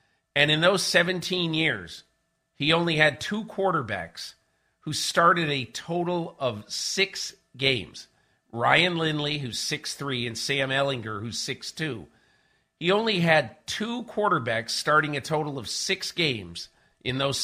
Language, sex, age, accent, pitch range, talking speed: English, male, 50-69, American, 130-170 Hz, 140 wpm